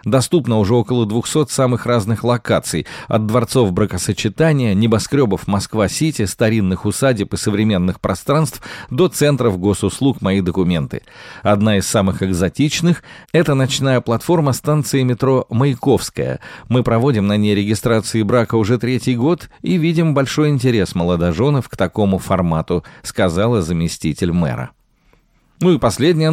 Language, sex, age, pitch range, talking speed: Russian, male, 40-59, 100-135 Hz, 125 wpm